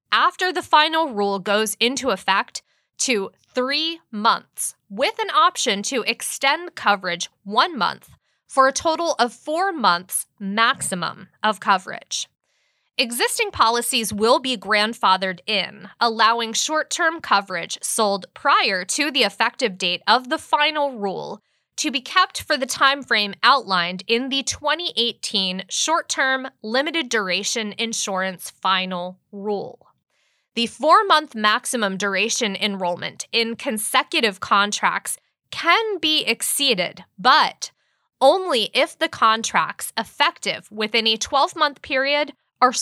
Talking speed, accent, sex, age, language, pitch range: 120 wpm, American, female, 20-39, English, 205-295 Hz